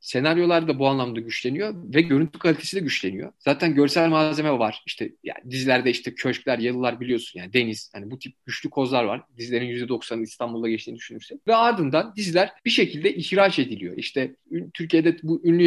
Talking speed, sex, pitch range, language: 170 wpm, male, 145-195 Hz, Turkish